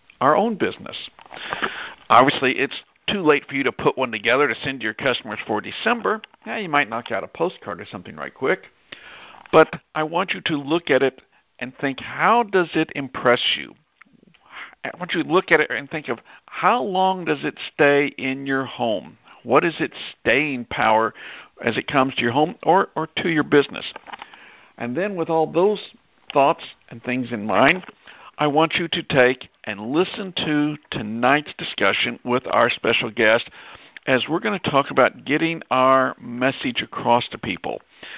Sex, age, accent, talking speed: male, 60-79, American, 180 wpm